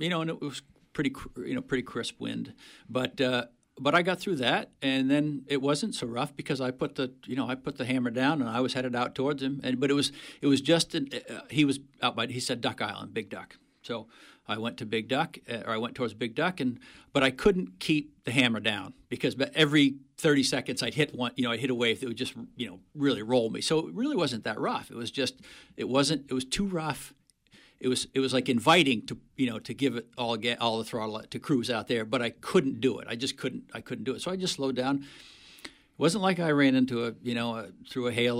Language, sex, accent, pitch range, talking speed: English, male, American, 120-145 Hz, 265 wpm